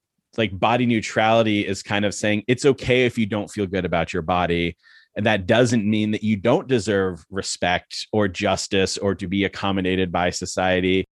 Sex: male